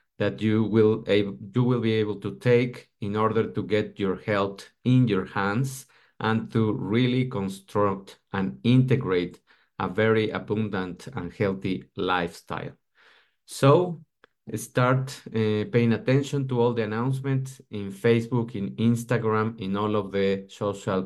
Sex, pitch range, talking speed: male, 100-130 Hz, 135 wpm